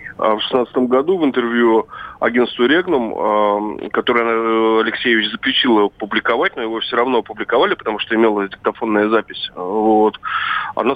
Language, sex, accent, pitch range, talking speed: Russian, male, native, 105-115 Hz, 130 wpm